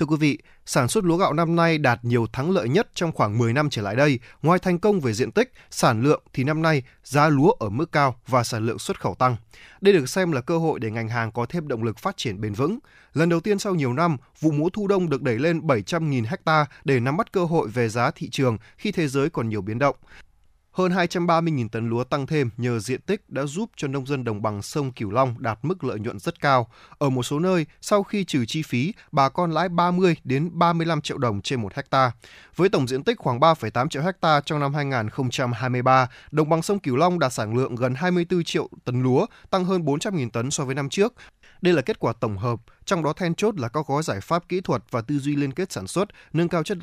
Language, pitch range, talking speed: Vietnamese, 125-170 Hz, 250 wpm